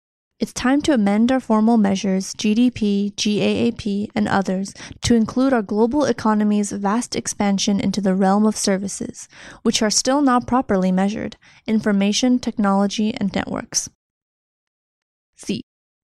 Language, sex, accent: Chinese, female, American